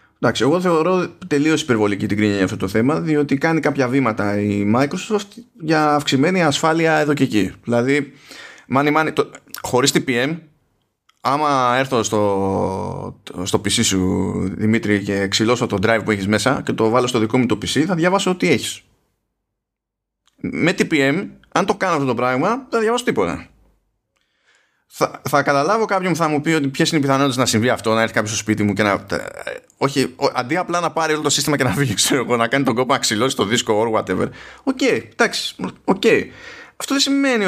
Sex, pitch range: male, 110-170 Hz